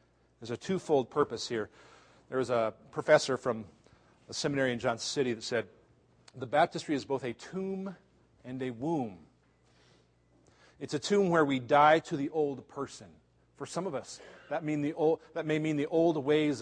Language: English